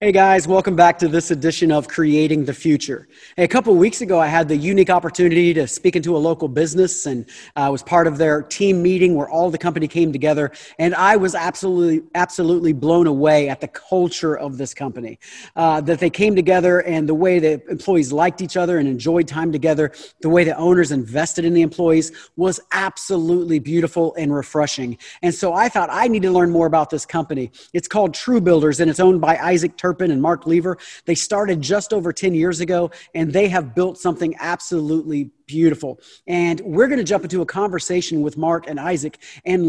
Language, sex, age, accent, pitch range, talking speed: English, male, 40-59, American, 155-180 Hz, 205 wpm